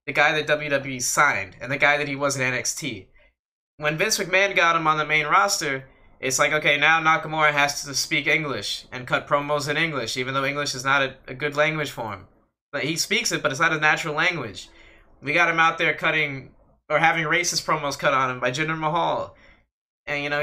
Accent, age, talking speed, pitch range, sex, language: American, 20-39, 225 wpm, 135-160 Hz, male, English